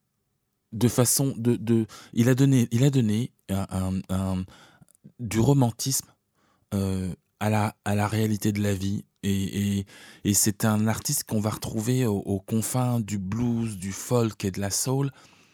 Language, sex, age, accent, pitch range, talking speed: French, male, 20-39, French, 95-110 Hz, 170 wpm